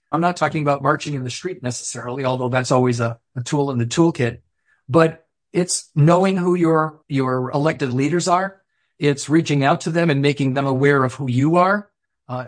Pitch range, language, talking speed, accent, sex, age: 135-165 Hz, English, 195 wpm, American, male, 50-69